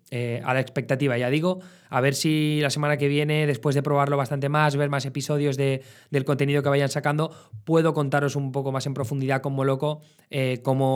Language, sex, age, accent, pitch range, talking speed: Spanish, male, 20-39, Spanish, 135-155 Hz, 195 wpm